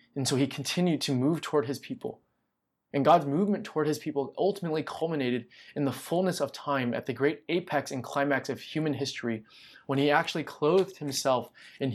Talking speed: 185 wpm